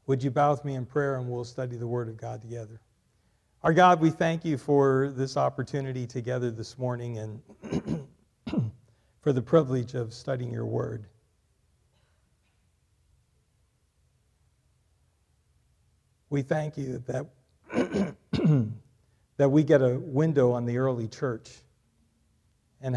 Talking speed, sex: 125 wpm, male